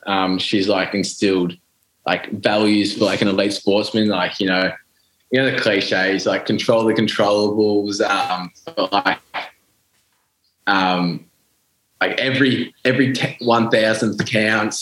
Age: 20-39